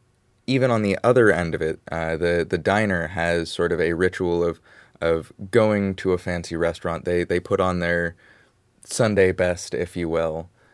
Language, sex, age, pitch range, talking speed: English, male, 20-39, 85-95 Hz, 185 wpm